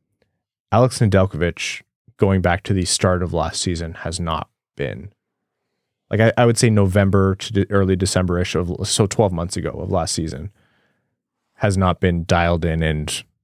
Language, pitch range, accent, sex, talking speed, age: English, 90-100 Hz, American, male, 170 wpm, 20-39